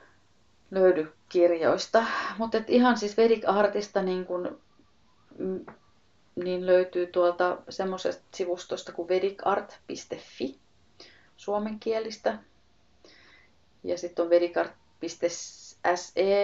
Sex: female